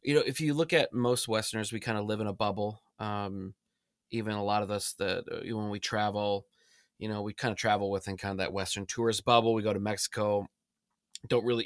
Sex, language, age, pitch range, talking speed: male, English, 20-39, 100-115 Hz, 225 wpm